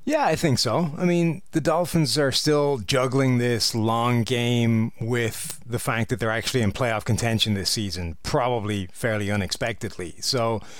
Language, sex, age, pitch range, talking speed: English, male, 30-49, 115-150 Hz, 160 wpm